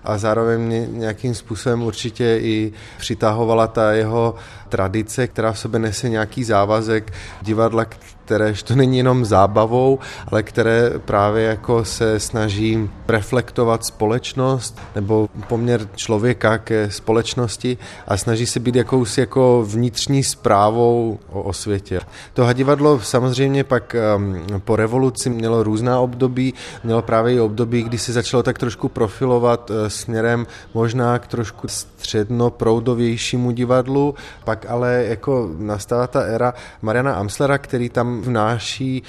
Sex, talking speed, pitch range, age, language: male, 125 wpm, 110-125 Hz, 20-39, Czech